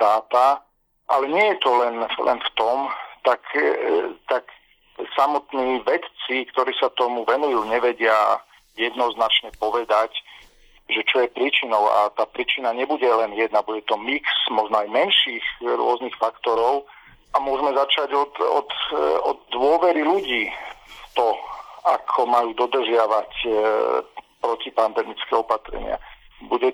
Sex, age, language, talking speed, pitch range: male, 40-59, Slovak, 125 wpm, 115-130 Hz